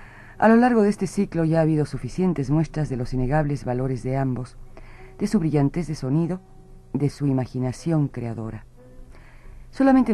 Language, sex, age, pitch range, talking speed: Spanish, female, 40-59, 125-160 Hz, 160 wpm